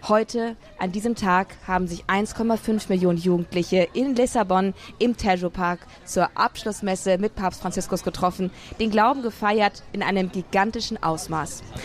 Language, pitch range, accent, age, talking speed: German, 185-225 Hz, German, 20-39, 135 wpm